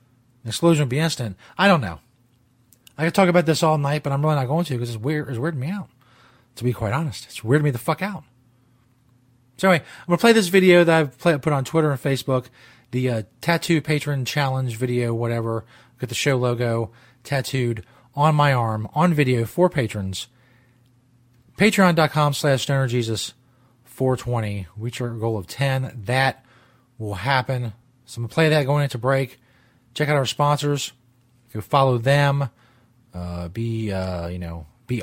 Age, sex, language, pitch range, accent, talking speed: 30-49, male, English, 120-150 Hz, American, 180 wpm